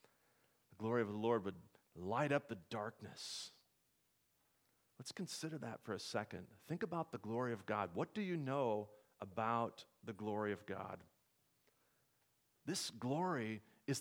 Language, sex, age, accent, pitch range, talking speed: English, male, 40-59, American, 115-160 Hz, 140 wpm